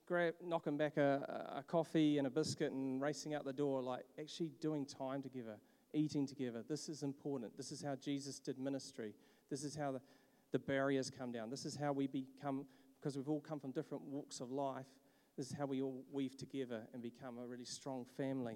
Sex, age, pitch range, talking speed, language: male, 40-59, 135-160 Hz, 205 wpm, English